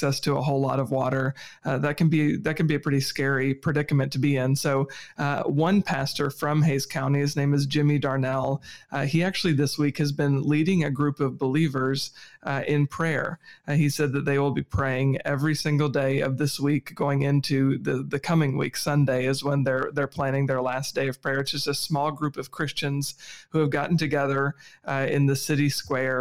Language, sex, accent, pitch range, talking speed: English, male, American, 135-150 Hz, 215 wpm